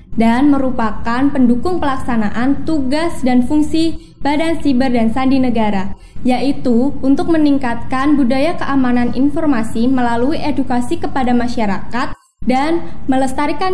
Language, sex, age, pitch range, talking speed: Indonesian, female, 10-29, 240-295 Hz, 105 wpm